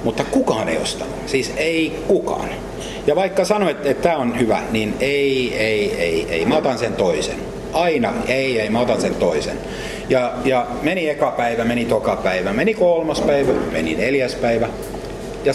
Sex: male